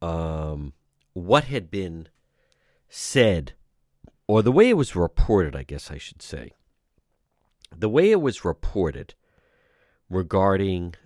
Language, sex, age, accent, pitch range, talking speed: English, male, 50-69, American, 80-120 Hz, 120 wpm